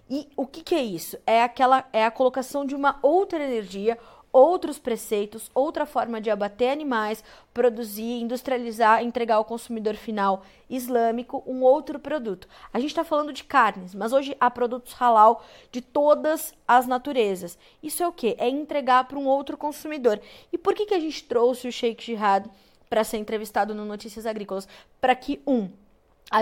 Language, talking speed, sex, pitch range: Portuguese, 175 wpm, female, 220-275 Hz